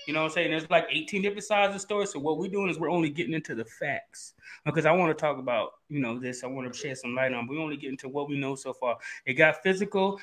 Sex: male